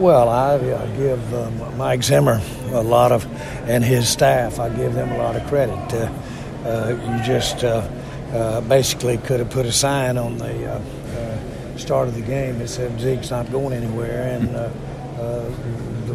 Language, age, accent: English, 60-79, American